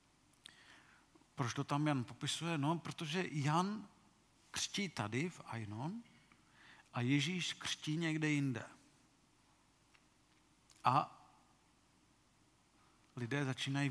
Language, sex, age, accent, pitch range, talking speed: Czech, male, 50-69, native, 135-160 Hz, 85 wpm